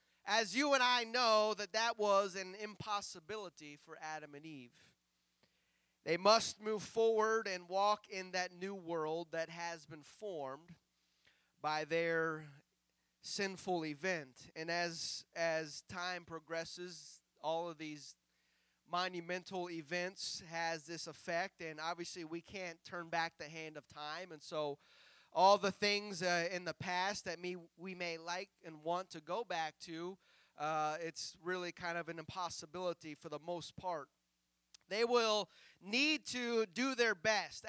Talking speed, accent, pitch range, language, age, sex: 150 wpm, American, 160-205 Hz, English, 30-49, male